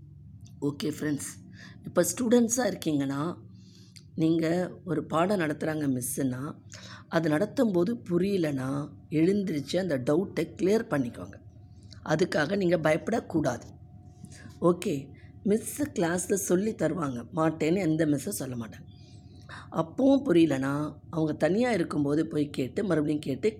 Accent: native